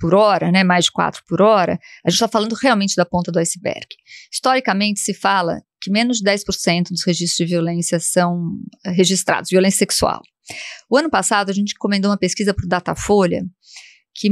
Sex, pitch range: female, 180-230 Hz